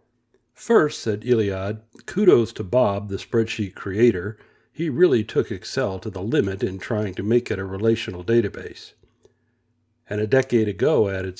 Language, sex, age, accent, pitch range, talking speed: English, male, 60-79, American, 100-120 Hz, 155 wpm